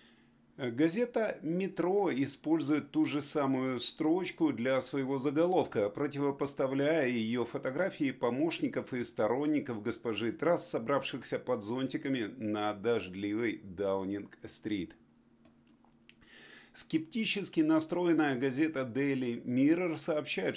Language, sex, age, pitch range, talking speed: Russian, male, 30-49, 115-150 Hz, 90 wpm